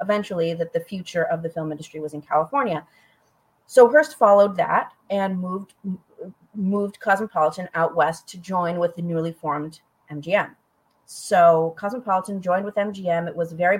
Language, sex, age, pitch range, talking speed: English, female, 30-49, 165-215 Hz, 155 wpm